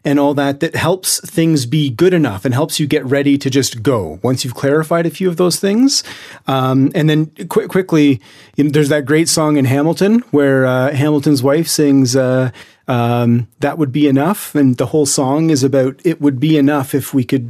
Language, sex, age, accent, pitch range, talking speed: English, male, 30-49, American, 135-165 Hz, 200 wpm